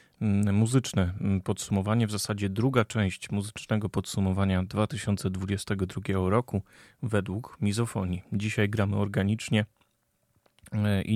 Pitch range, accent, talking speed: 95-105 Hz, native, 85 wpm